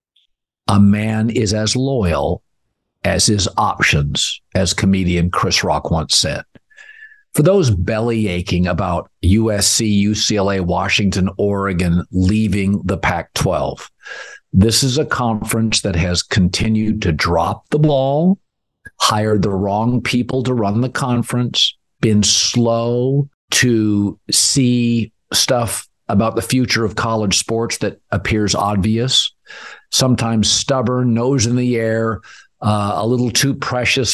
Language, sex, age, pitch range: English, male, 50-69, 100-125 Hz